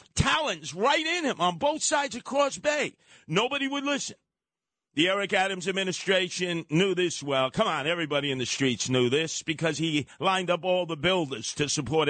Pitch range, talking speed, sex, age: 135-190 Hz, 185 wpm, male, 50-69